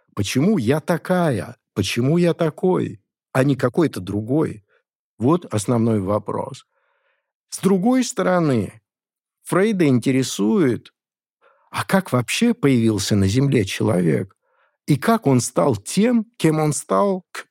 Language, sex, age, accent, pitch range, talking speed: Russian, male, 50-69, native, 110-150 Hz, 115 wpm